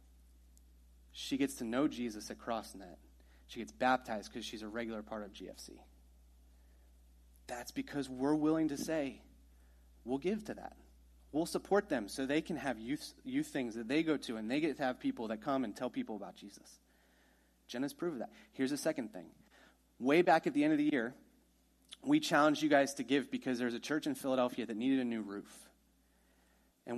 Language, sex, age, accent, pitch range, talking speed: English, male, 30-49, American, 110-160 Hz, 195 wpm